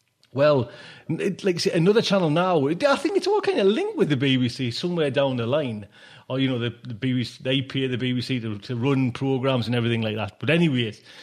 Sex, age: male, 30-49